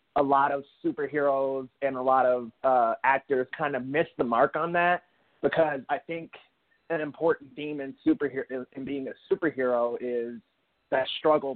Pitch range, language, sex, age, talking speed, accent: 130-165 Hz, English, male, 20-39, 165 wpm, American